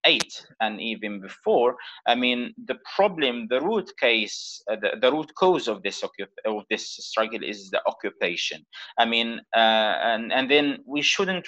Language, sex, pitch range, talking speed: English, male, 115-155 Hz, 175 wpm